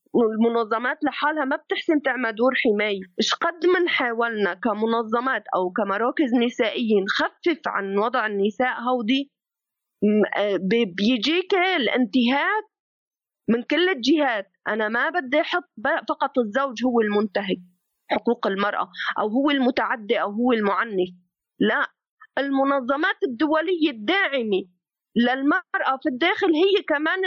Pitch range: 215-310 Hz